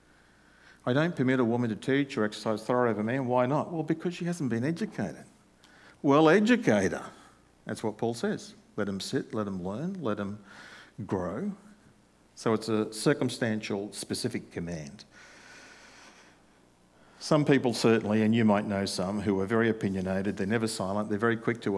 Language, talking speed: English, 165 wpm